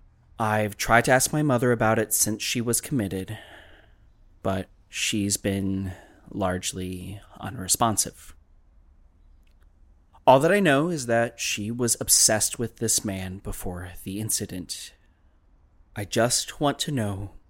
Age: 30-49